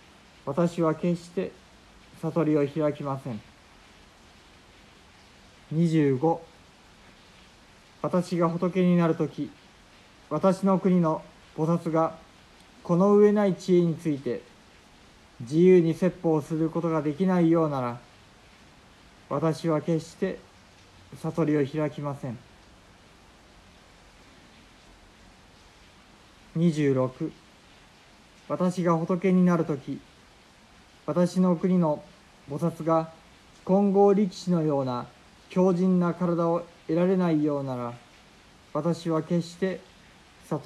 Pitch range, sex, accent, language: 135-175 Hz, male, native, Japanese